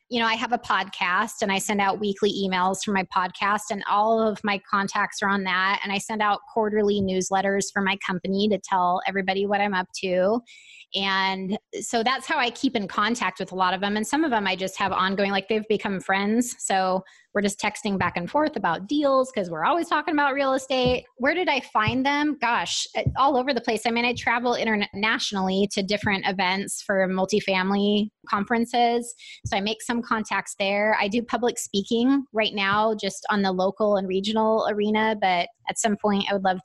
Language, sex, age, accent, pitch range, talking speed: English, female, 20-39, American, 195-240 Hz, 210 wpm